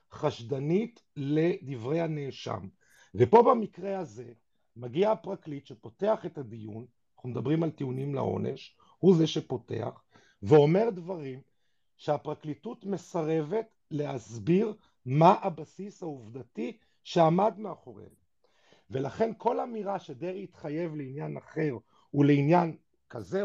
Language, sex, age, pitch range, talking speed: Hebrew, male, 50-69, 140-200 Hz, 95 wpm